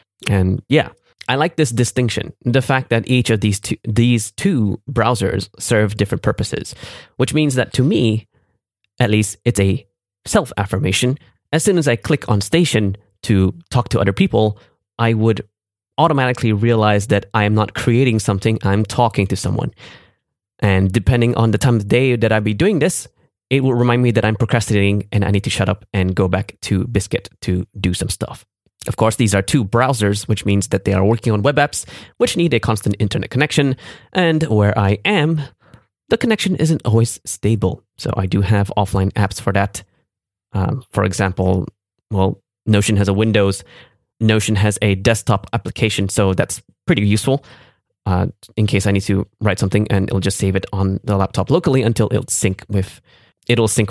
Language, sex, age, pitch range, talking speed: English, male, 20-39, 100-120 Hz, 185 wpm